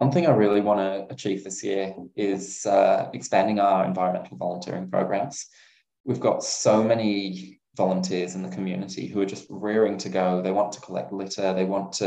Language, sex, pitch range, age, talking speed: English, male, 90-100 Hz, 20-39, 185 wpm